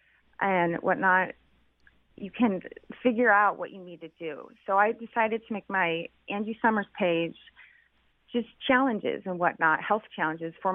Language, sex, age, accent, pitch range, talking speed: English, female, 30-49, American, 170-205 Hz, 150 wpm